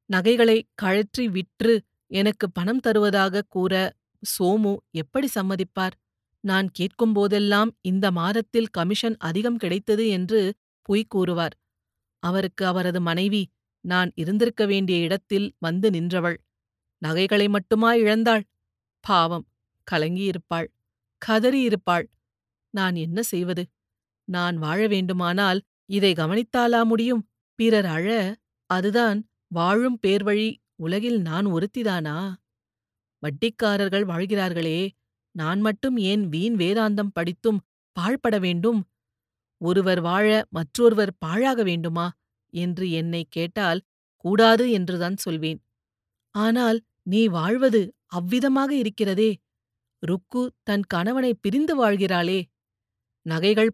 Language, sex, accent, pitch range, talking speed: Tamil, female, native, 170-215 Hz, 90 wpm